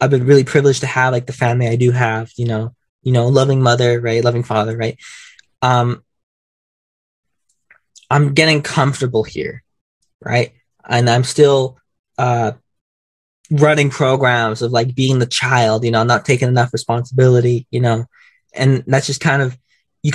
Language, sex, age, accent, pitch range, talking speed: English, male, 20-39, American, 120-145 Hz, 160 wpm